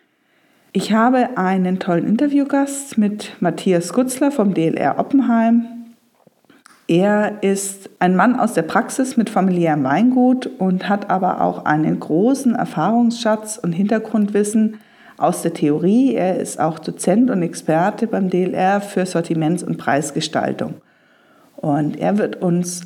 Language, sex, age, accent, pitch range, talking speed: German, female, 50-69, German, 185-245 Hz, 130 wpm